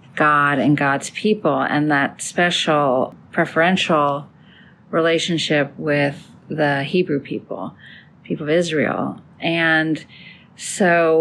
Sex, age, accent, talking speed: female, 40-59, American, 95 wpm